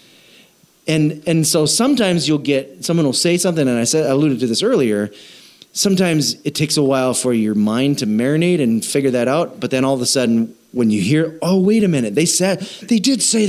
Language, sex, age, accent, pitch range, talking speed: English, male, 30-49, American, 125-195 Hz, 225 wpm